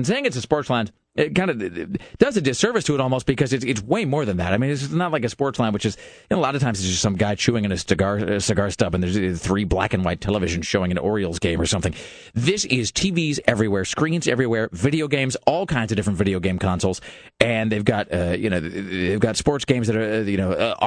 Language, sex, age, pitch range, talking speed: English, male, 40-59, 95-130 Hz, 265 wpm